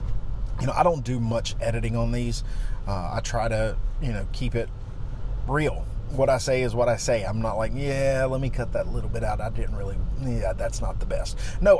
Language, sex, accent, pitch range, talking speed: English, male, American, 100-120 Hz, 230 wpm